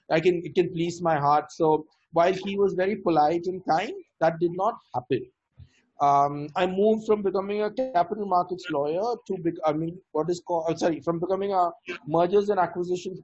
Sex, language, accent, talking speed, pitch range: male, English, Indian, 190 wpm, 165-205 Hz